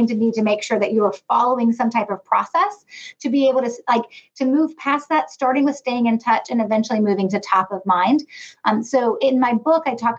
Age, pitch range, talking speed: 30-49, 205-255 Hz, 240 wpm